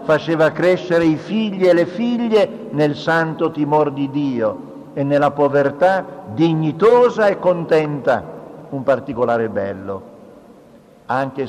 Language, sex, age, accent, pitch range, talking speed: Italian, male, 50-69, native, 115-160 Hz, 115 wpm